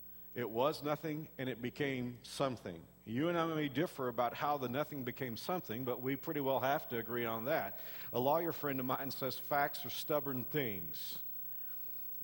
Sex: male